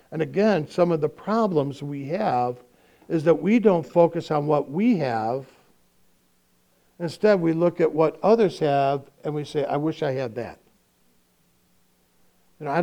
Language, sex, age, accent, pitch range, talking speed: English, male, 60-79, American, 115-160 Hz, 155 wpm